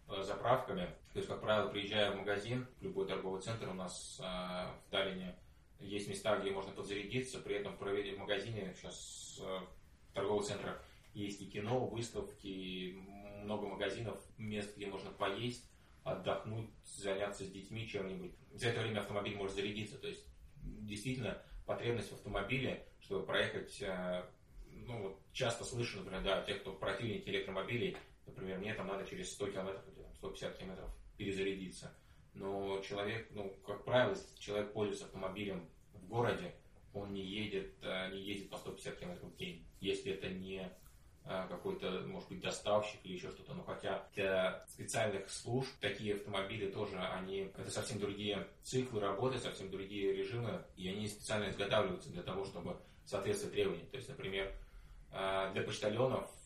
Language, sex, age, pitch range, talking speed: Russian, male, 20-39, 95-110 Hz, 150 wpm